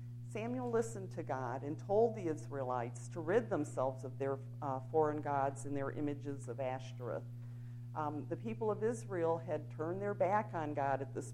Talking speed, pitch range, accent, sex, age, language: 180 wpm, 120-160 Hz, American, female, 50-69, English